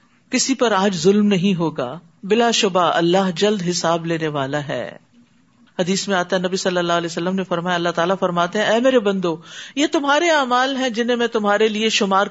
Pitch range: 185-260 Hz